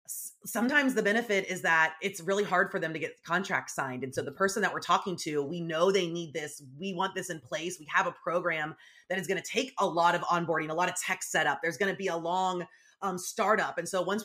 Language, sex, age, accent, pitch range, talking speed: English, female, 30-49, American, 160-195 Hz, 255 wpm